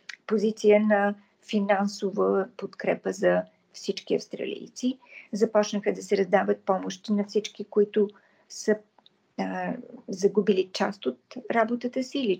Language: Bulgarian